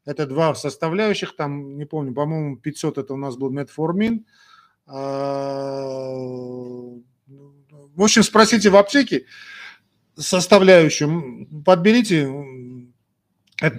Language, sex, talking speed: Russian, male, 90 wpm